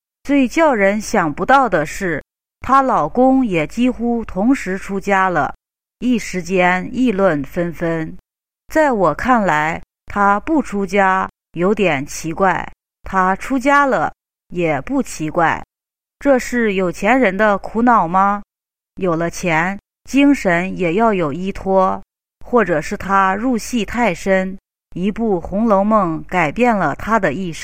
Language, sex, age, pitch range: English, female, 30-49, 180-240 Hz